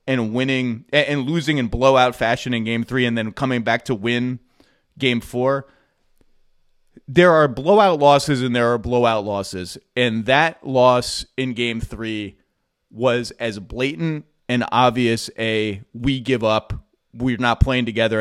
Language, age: English, 30-49